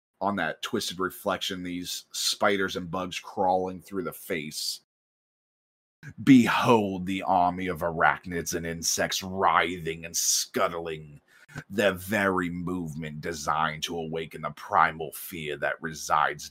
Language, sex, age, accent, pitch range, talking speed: English, male, 30-49, American, 75-95 Hz, 120 wpm